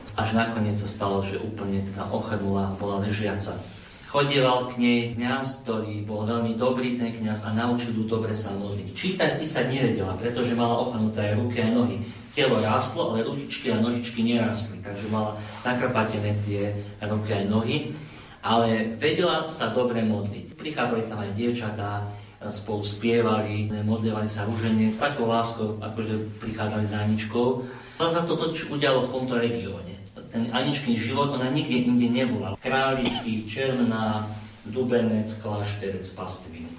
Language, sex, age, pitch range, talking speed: Slovak, male, 40-59, 105-125 Hz, 145 wpm